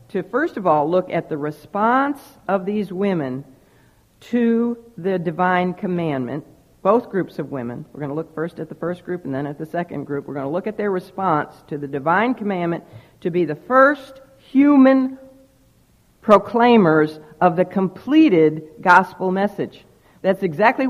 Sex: female